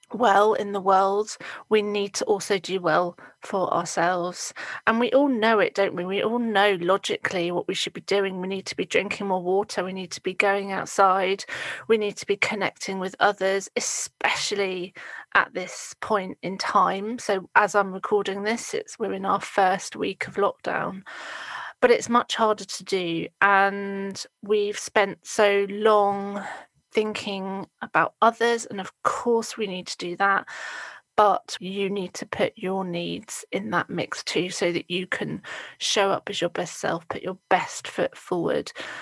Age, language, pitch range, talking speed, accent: 30-49, English, 185-210 Hz, 175 wpm, British